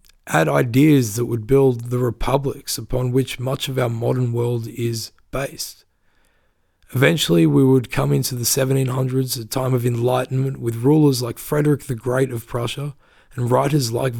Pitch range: 120-135 Hz